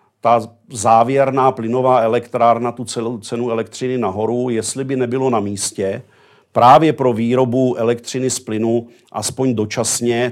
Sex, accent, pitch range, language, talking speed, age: male, native, 110-125 Hz, Czech, 120 wpm, 40-59